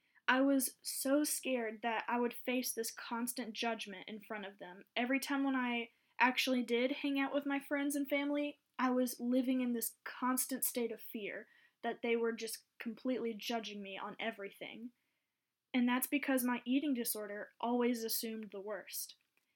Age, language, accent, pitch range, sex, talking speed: 10-29, English, American, 235-280 Hz, female, 170 wpm